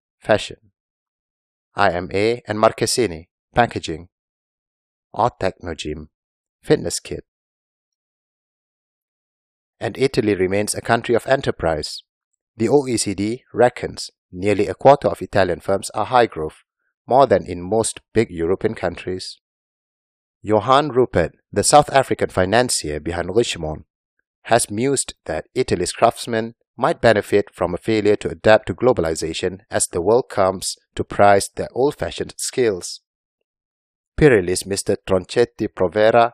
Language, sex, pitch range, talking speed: English, male, 90-115 Hz, 115 wpm